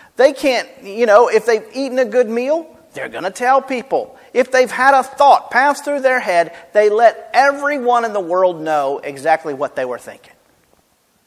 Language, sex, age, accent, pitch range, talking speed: English, male, 40-59, American, 205-290 Hz, 190 wpm